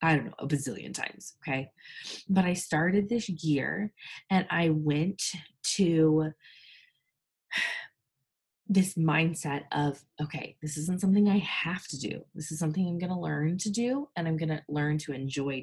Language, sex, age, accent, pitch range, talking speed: English, female, 20-39, American, 150-200 Hz, 165 wpm